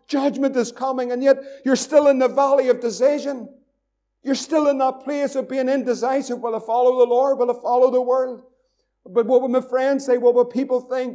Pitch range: 235-275 Hz